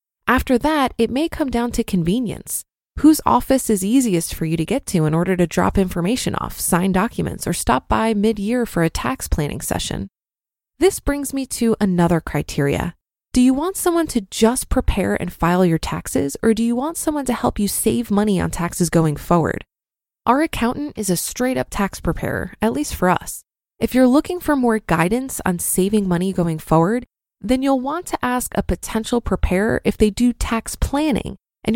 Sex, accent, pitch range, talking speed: female, American, 180-245 Hz, 195 wpm